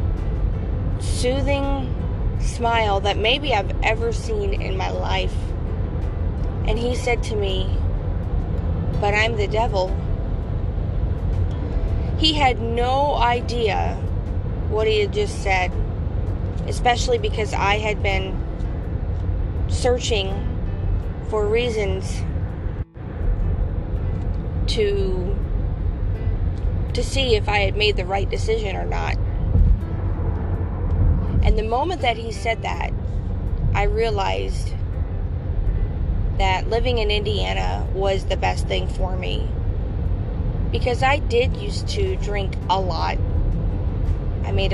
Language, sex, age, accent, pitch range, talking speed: English, female, 20-39, American, 85-95 Hz, 105 wpm